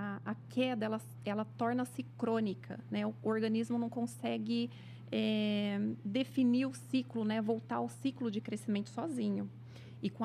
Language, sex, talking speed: Portuguese, female, 140 wpm